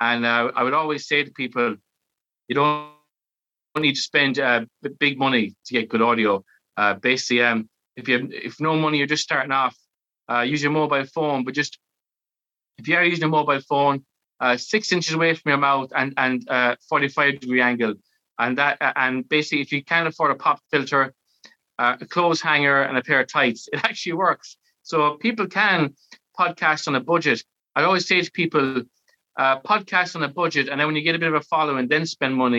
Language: English